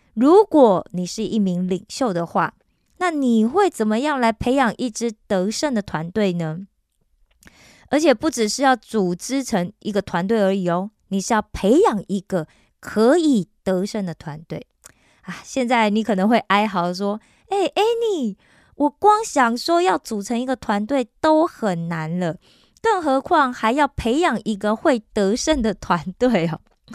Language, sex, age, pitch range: Korean, female, 20-39, 195-270 Hz